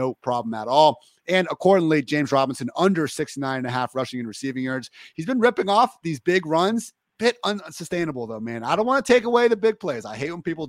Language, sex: English, male